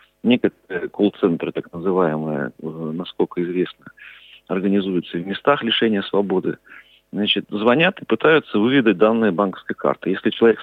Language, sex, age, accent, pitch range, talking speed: Russian, male, 40-59, native, 95-110 Hz, 120 wpm